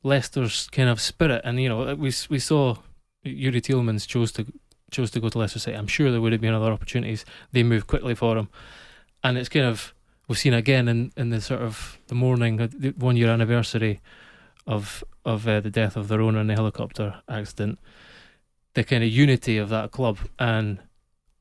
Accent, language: British, English